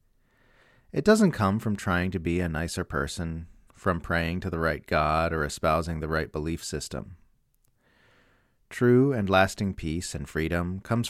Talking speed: 155 wpm